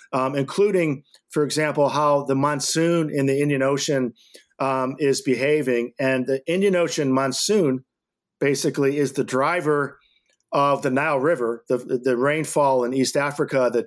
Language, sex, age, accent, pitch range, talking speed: English, male, 40-59, American, 130-155 Hz, 145 wpm